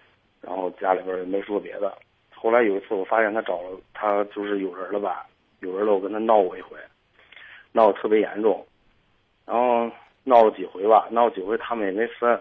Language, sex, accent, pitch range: Chinese, male, native, 105-125 Hz